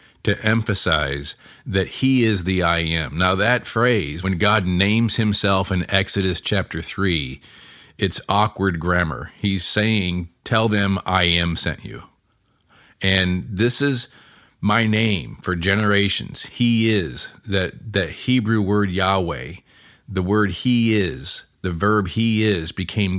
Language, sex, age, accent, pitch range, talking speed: English, male, 40-59, American, 90-110 Hz, 135 wpm